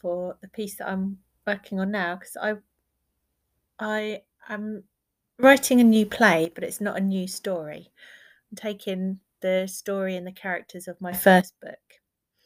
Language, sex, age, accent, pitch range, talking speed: English, female, 30-49, British, 175-210 Hz, 160 wpm